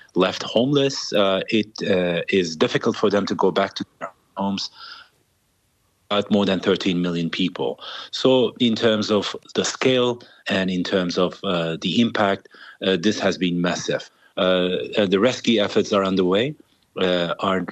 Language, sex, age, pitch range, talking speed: English, male, 40-59, 90-110 Hz, 160 wpm